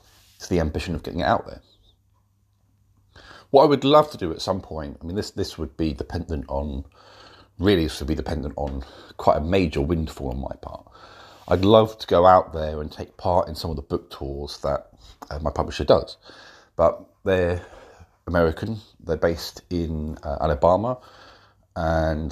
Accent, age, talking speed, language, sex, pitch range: British, 40-59, 175 wpm, English, male, 75-95 Hz